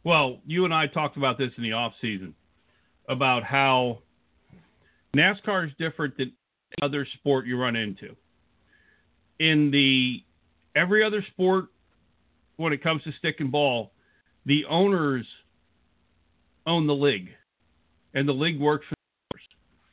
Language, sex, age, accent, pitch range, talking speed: English, male, 50-69, American, 125-175 Hz, 140 wpm